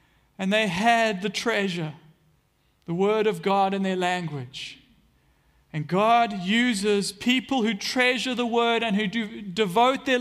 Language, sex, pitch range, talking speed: English, male, 170-225 Hz, 140 wpm